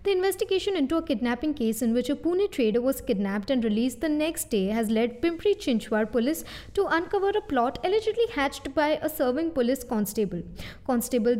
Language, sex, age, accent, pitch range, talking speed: English, female, 20-39, Indian, 225-315 Hz, 185 wpm